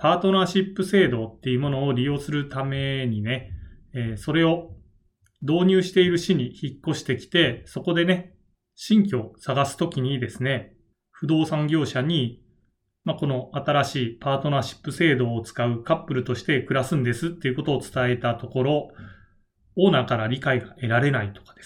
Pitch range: 120-160 Hz